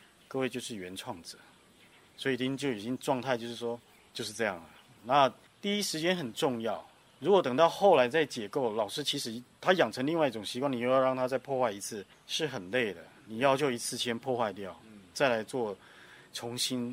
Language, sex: Chinese, male